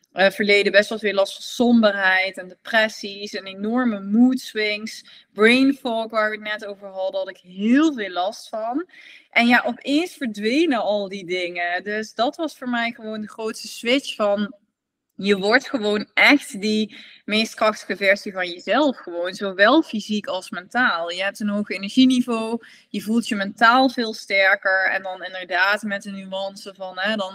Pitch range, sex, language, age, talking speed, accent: 195-255 Hz, female, Dutch, 20-39, 175 wpm, Dutch